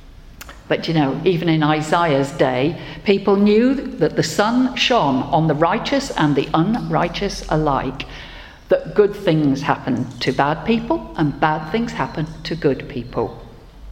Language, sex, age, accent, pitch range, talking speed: English, female, 50-69, British, 140-195 Hz, 145 wpm